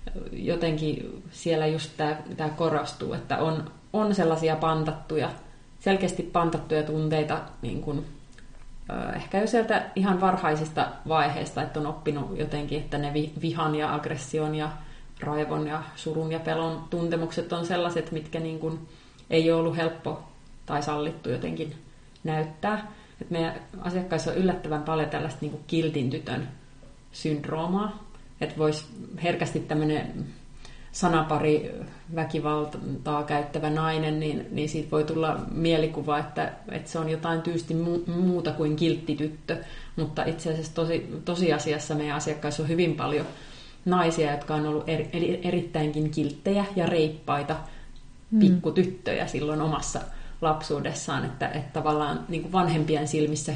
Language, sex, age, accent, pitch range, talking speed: Finnish, female, 30-49, native, 150-165 Hz, 130 wpm